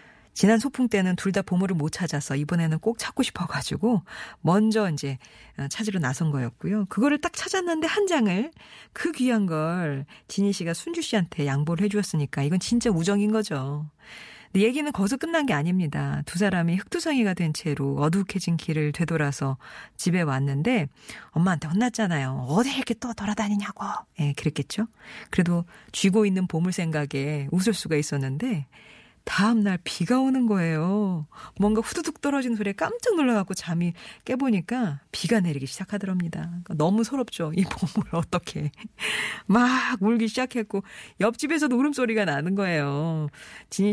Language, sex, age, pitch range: Korean, female, 40-59, 155-220 Hz